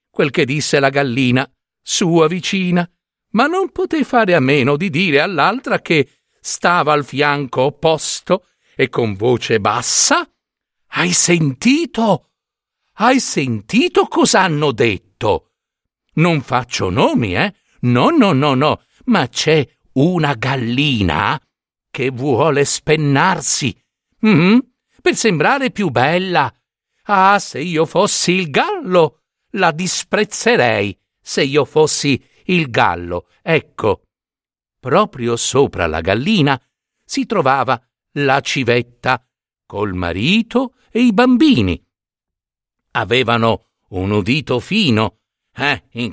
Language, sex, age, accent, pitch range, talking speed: Italian, male, 60-79, native, 120-185 Hz, 110 wpm